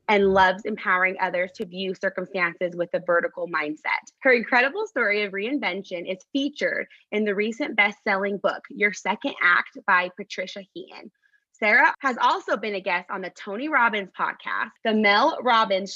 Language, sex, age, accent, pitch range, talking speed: English, female, 20-39, American, 195-265 Hz, 160 wpm